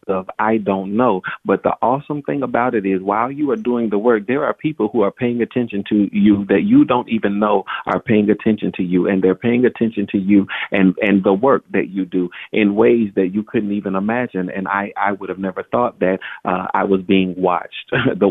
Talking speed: 230 wpm